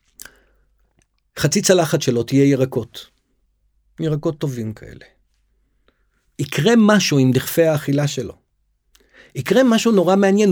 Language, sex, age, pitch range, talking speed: Hebrew, male, 50-69, 125-180 Hz, 105 wpm